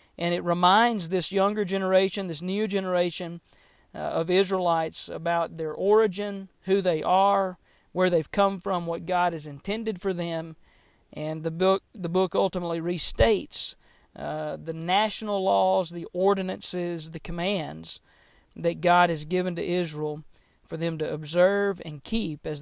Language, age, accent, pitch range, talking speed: English, 40-59, American, 165-195 Hz, 150 wpm